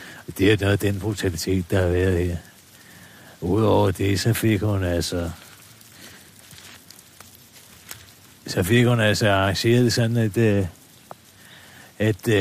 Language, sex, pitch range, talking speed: Danish, male, 95-110 Hz, 120 wpm